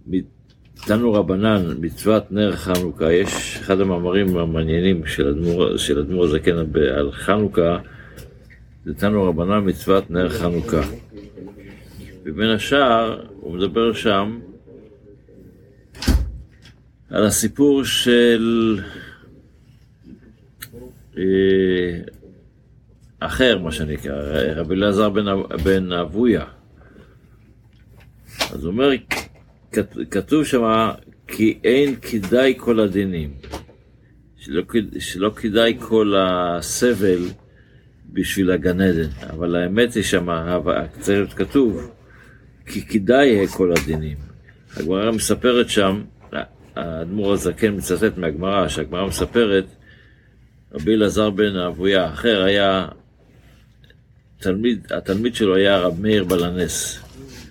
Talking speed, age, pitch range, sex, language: 90 wpm, 50-69, 90-115 Hz, male, Hebrew